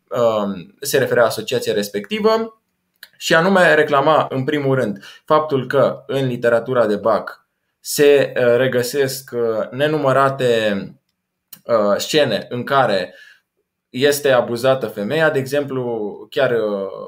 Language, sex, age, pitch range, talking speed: Romanian, male, 20-39, 125-165 Hz, 100 wpm